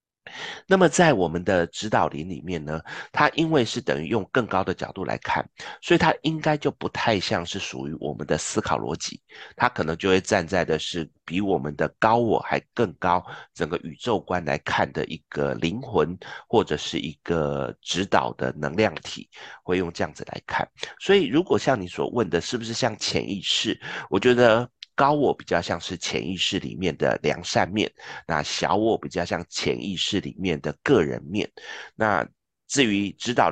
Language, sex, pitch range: Chinese, male, 80-120 Hz